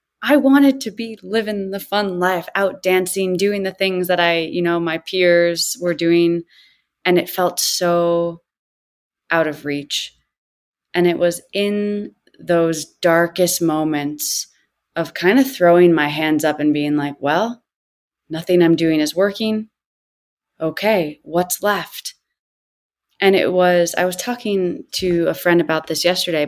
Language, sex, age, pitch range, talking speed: English, female, 20-39, 160-200 Hz, 150 wpm